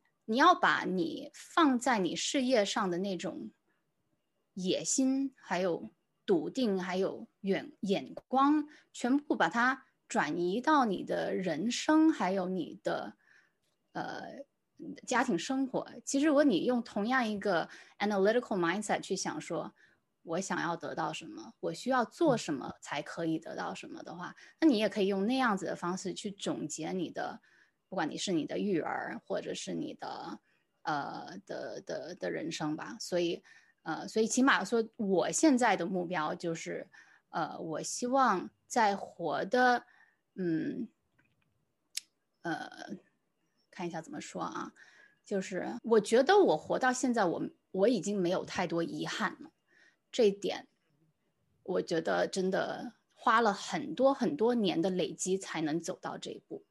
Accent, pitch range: Chinese, 180-265 Hz